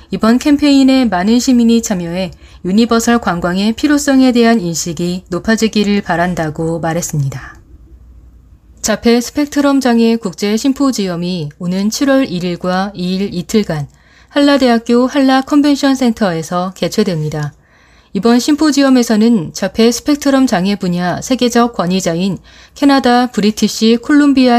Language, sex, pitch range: Korean, female, 180-235 Hz